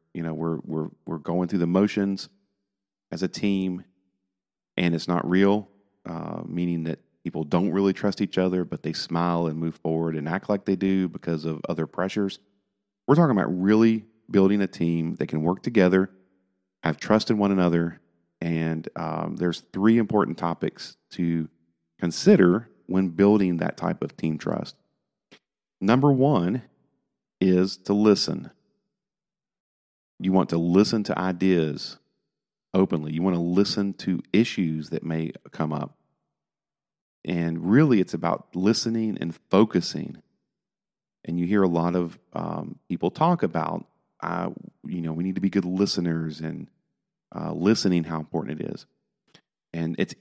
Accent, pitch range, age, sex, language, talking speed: American, 85-100 Hz, 40-59, male, English, 155 wpm